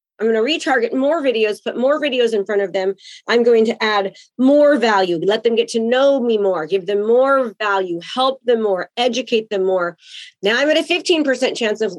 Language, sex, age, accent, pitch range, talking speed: English, female, 30-49, American, 210-280 Hz, 215 wpm